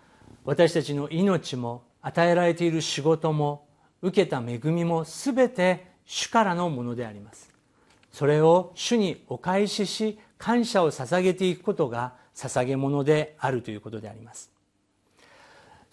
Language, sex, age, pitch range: Japanese, male, 50-69, 135-195 Hz